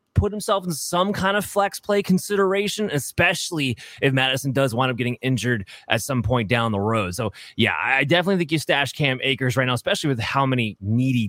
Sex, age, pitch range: male, 20-39, 125-170 Hz